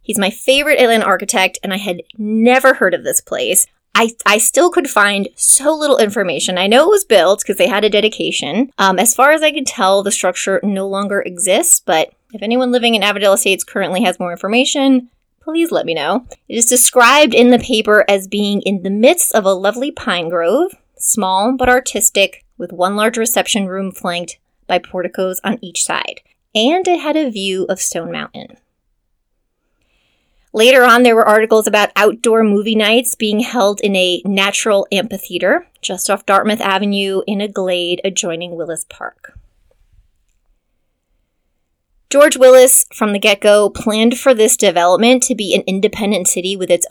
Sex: female